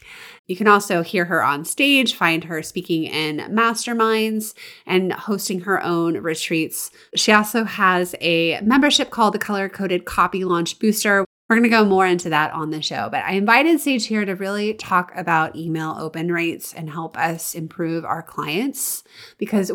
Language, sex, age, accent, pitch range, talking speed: English, female, 30-49, American, 170-220 Hz, 175 wpm